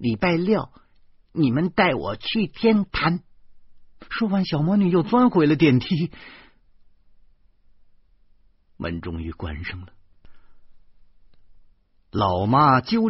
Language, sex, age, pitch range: Chinese, male, 50-69, 80-130 Hz